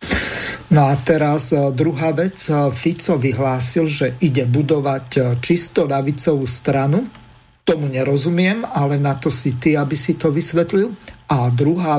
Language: Slovak